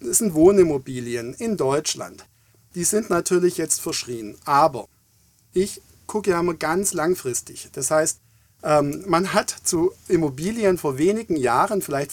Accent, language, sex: German, German, male